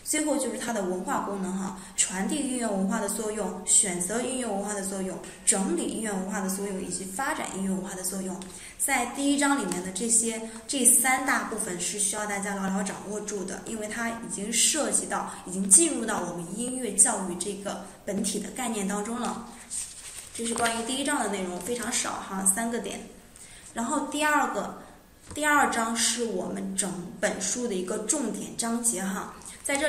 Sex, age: female, 20-39